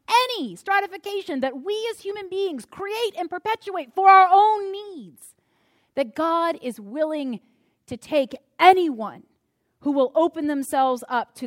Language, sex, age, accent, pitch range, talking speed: English, female, 30-49, American, 220-305 Hz, 140 wpm